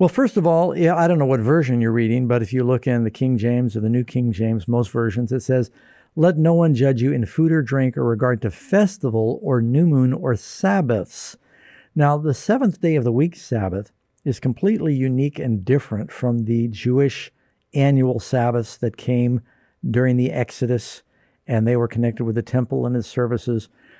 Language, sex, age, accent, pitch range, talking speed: English, male, 60-79, American, 115-140 Hz, 200 wpm